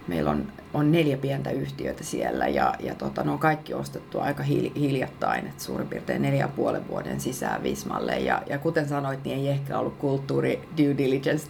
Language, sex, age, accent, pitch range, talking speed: Finnish, female, 30-49, native, 135-160 Hz, 185 wpm